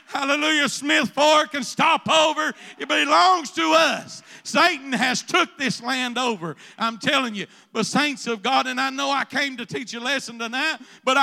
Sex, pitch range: male, 205-285 Hz